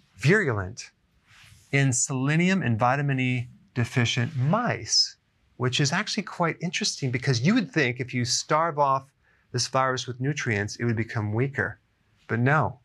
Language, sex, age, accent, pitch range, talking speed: English, male, 30-49, American, 115-145 Hz, 145 wpm